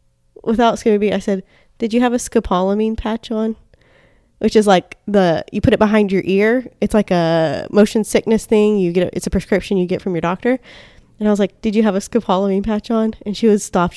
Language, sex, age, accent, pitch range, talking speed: English, female, 10-29, American, 190-245 Hz, 225 wpm